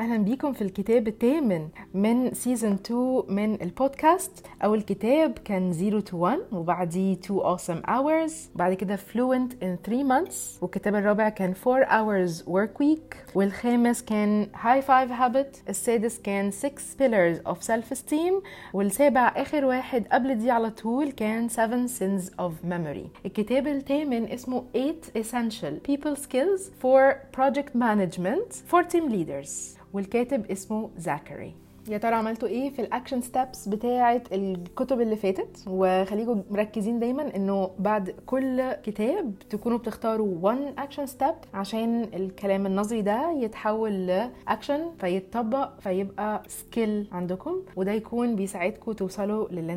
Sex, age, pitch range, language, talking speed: female, 30-49, 195-255 Hz, Arabic, 130 wpm